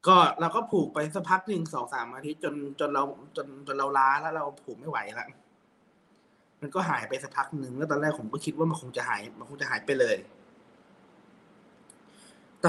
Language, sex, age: Thai, male, 20-39